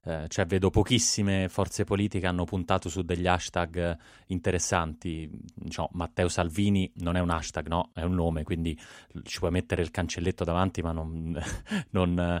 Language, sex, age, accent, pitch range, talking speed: Italian, male, 30-49, native, 85-105 Hz, 165 wpm